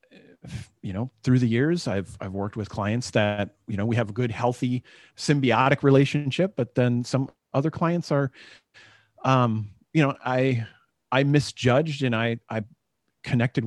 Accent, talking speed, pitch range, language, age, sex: American, 165 wpm, 110-140 Hz, English, 30-49, male